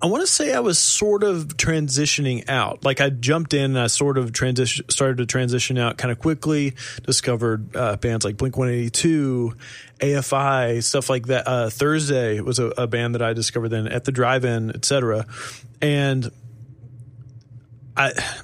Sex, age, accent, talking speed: male, 30-49, American, 170 wpm